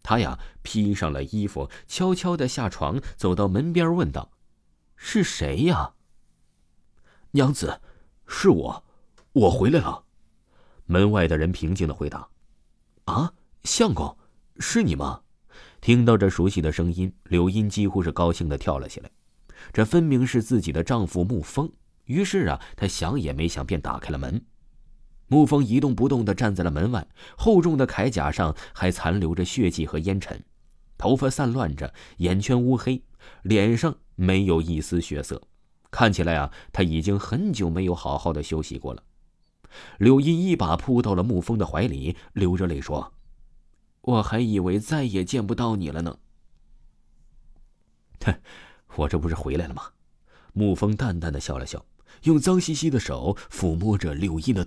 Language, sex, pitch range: Chinese, male, 80-120 Hz